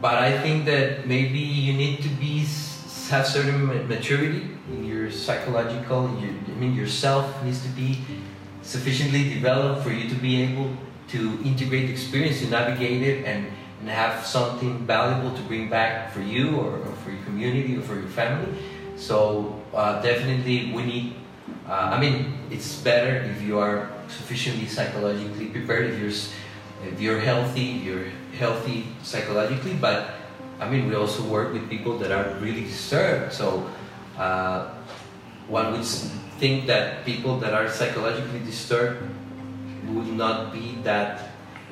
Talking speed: 150 wpm